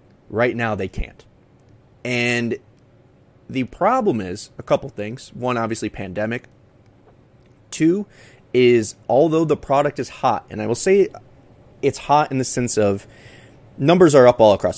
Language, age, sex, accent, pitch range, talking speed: English, 30-49, male, American, 110-140 Hz, 145 wpm